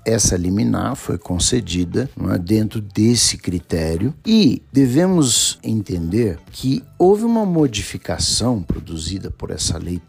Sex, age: male, 60-79